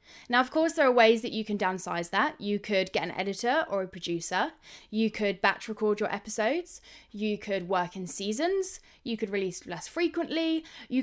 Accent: British